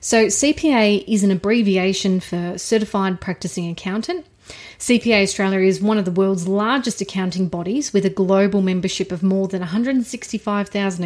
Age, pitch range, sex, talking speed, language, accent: 30-49, 190-230 Hz, female, 145 wpm, English, Australian